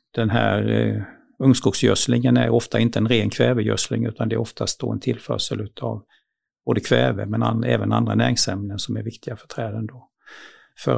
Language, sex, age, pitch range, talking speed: Swedish, male, 60-79, 105-120 Hz, 170 wpm